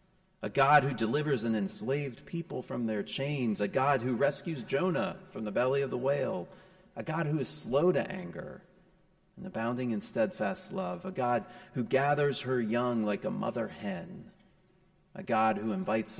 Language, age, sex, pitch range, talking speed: English, 30-49, male, 125-185 Hz, 175 wpm